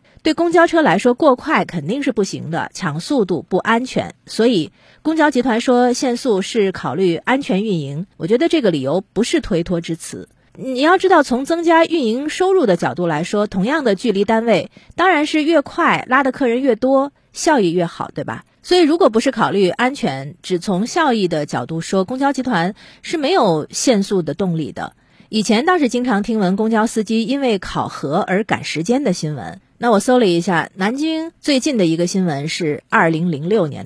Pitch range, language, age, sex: 175-255 Hz, Chinese, 30-49, female